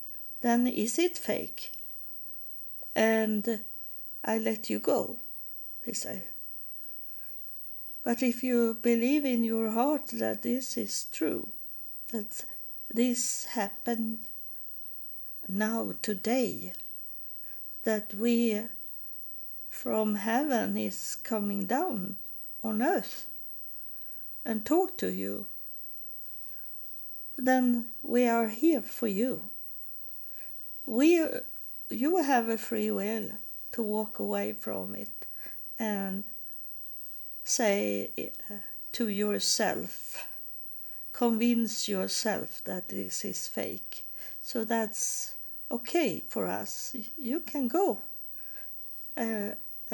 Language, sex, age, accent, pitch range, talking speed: English, female, 50-69, Swedish, 205-245 Hz, 90 wpm